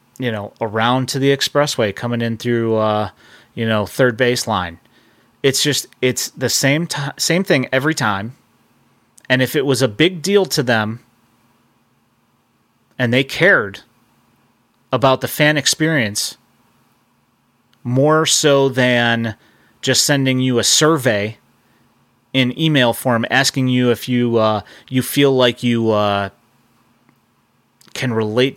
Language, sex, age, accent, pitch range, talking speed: English, male, 30-49, American, 115-135 Hz, 130 wpm